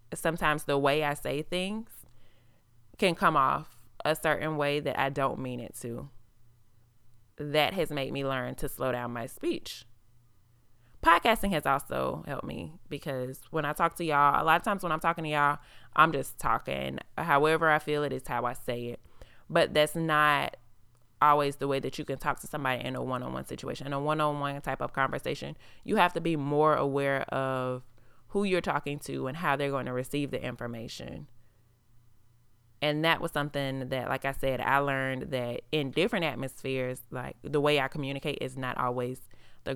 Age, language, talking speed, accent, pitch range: 20-39, English, 185 wpm, American, 120-150 Hz